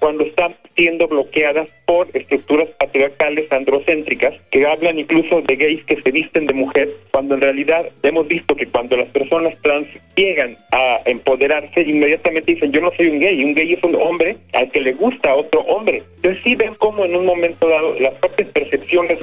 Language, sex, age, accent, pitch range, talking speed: Spanish, male, 40-59, Mexican, 145-185 Hz, 185 wpm